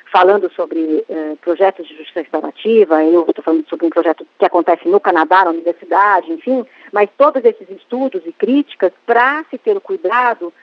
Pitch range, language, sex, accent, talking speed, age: 190-255 Hz, Portuguese, female, Brazilian, 175 wpm, 40-59